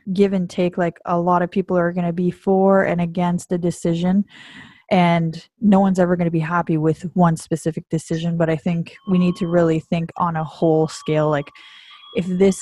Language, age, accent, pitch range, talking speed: English, 20-39, American, 165-190 Hz, 210 wpm